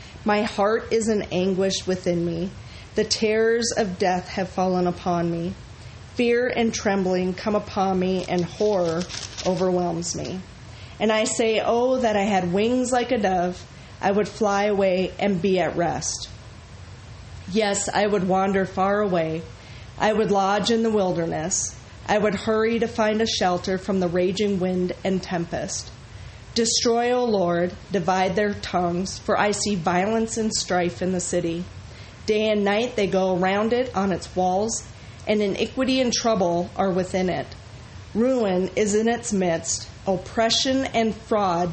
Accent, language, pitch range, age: American, English, 175-215 Hz, 30-49